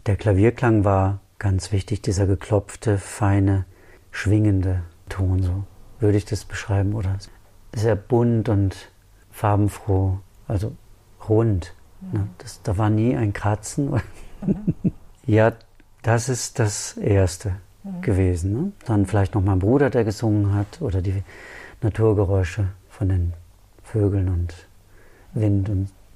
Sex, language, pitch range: male, German, 95-110 Hz